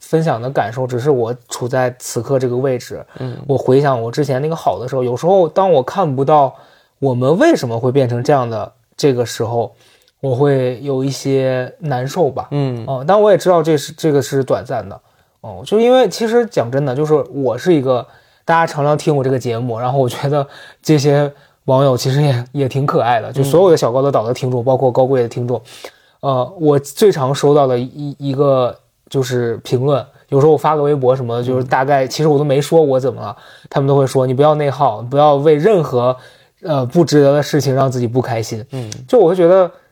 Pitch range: 125-150 Hz